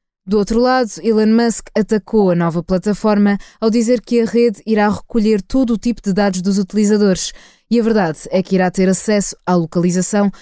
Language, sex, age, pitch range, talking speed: Portuguese, female, 20-39, 185-225 Hz, 190 wpm